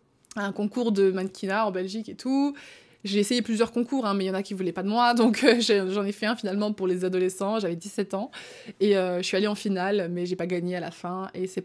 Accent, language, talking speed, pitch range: French, French, 280 wpm, 200-260 Hz